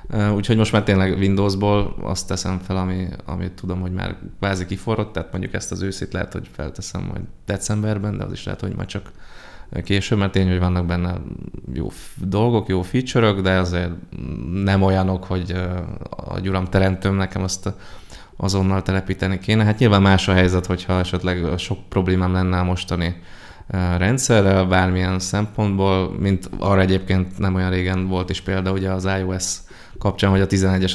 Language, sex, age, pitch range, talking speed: Hungarian, male, 20-39, 90-100 Hz, 165 wpm